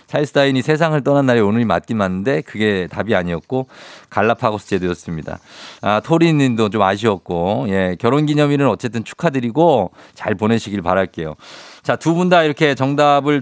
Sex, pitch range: male, 110-155 Hz